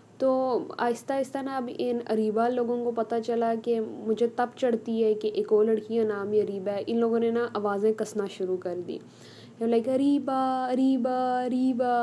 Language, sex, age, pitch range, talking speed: Urdu, female, 10-29, 215-255 Hz, 180 wpm